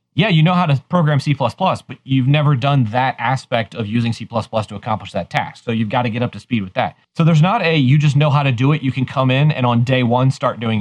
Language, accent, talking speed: English, American, 285 wpm